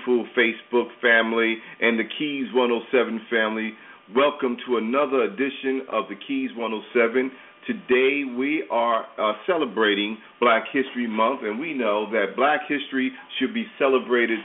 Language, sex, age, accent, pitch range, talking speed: English, male, 40-59, American, 115-155 Hz, 135 wpm